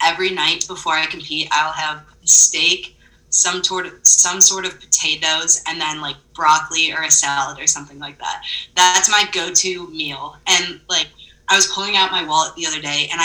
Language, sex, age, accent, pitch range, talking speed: English, female, 20-39, American, 155-190 Hz, 180 wpm